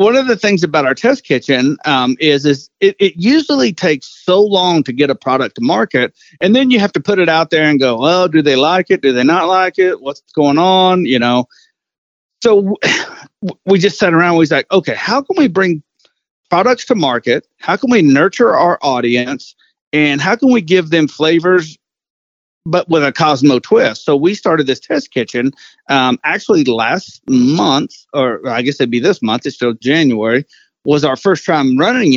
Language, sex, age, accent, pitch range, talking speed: English, male, 40-59, American, 140-195 Hz, 205 wpm